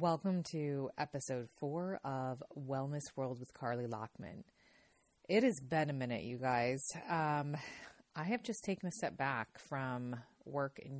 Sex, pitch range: female, 130-165 Hz